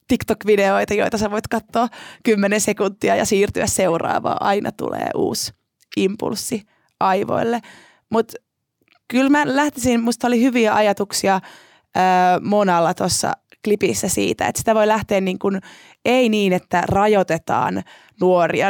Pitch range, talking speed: 190-230 Hz, 115 wpm